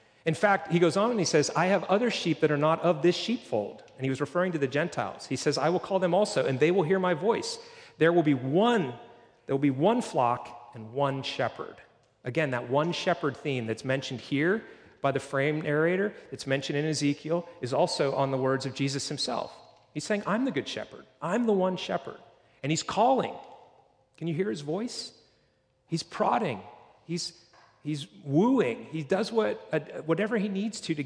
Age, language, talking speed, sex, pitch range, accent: 40-59, English, 205 wpm, male, 140-180 Hz, American